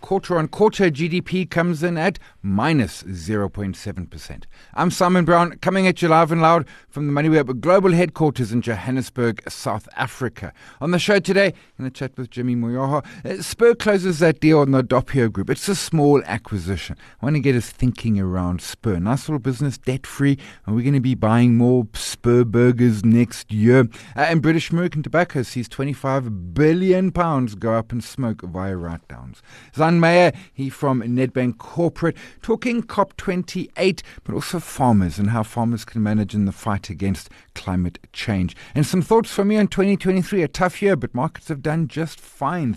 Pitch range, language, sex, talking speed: 115-165 Hz, English, male, 170 wpm